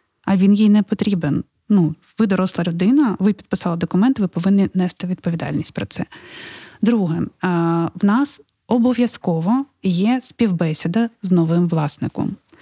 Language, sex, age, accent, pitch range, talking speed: Ukrainian, female, 20-39, native, 175-220 Hz, 130 wpm